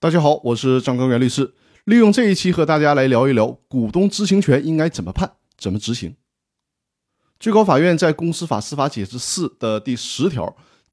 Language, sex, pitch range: Chinese, male, 120-160 Hz